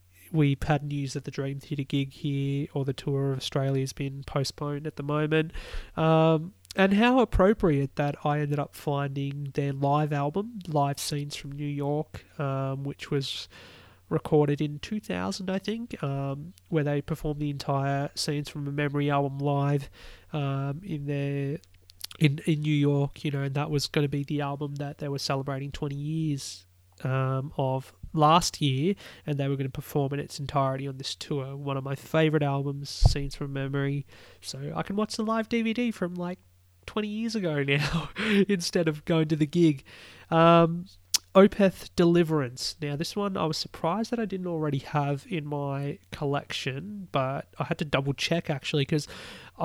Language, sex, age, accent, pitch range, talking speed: English, male, 20-39, Australian, 140-160 Hz, 180 wpm